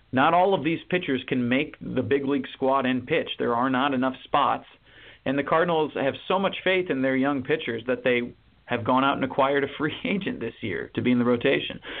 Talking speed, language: 230 wpm, English